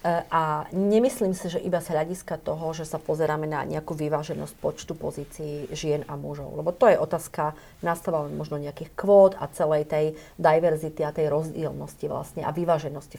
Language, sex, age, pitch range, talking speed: Slovak, female, 30-49, 155-185 Hz, 170 wpm